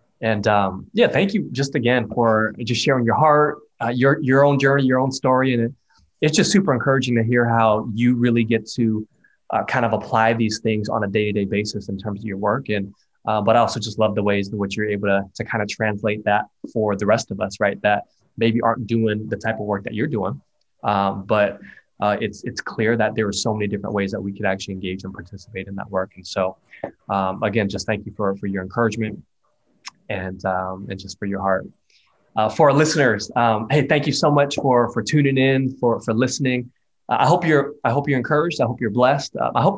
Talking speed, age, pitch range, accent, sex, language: 235 wpm, 20-39, 105-135 Hz, American, male, English